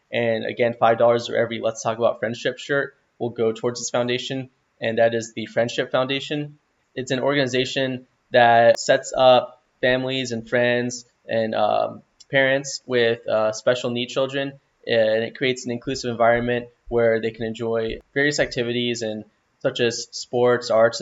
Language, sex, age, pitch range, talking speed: English, male, 10-29, 110-125 Hz, 160 wpm